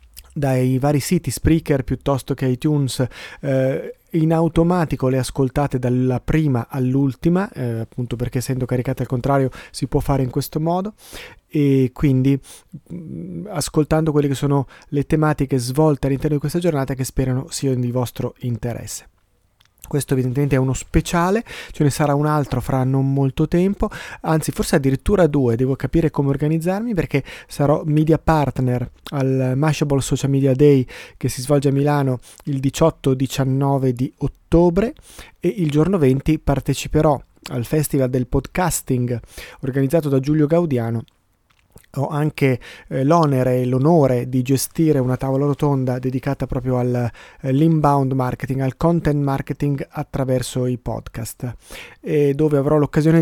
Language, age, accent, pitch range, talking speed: Italian, 30-49, native, 130-155 Hz, 140 wpm